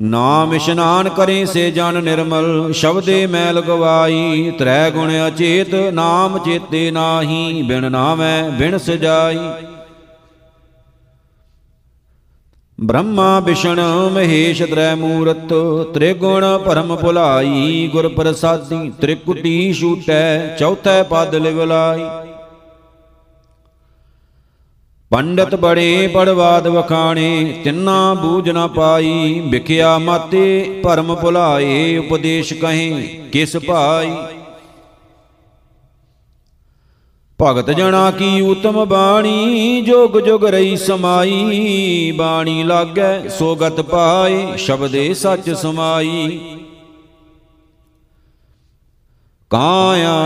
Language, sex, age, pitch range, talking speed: Punjabi, male, 50-69, 160-175 Hz, 80 wpm